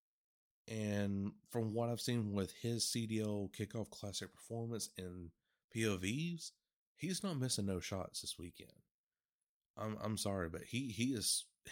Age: 30-49